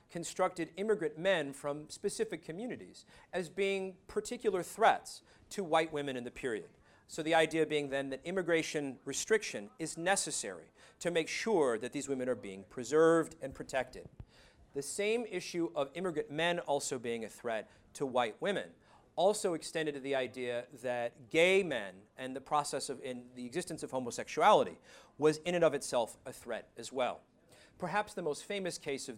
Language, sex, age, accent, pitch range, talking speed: English, male, 40-59, American, 130-175 Hz, 170 wpm